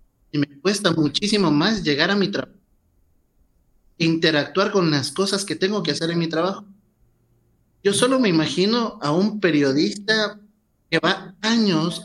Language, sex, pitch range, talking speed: Spanish, male, 145-195 Hz, 150 wpm